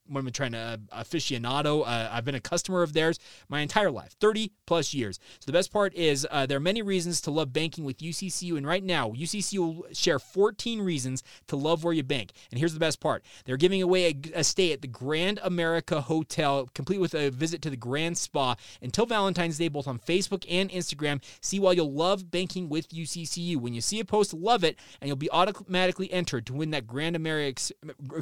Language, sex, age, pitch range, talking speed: English, male, 30-49, 140-180 Hz, 215 wpm